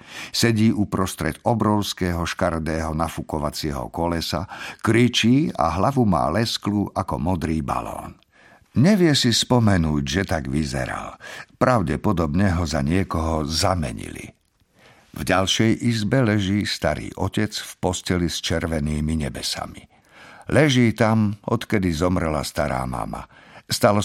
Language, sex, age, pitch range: Slovak, male, 50-69, 80-110 Hz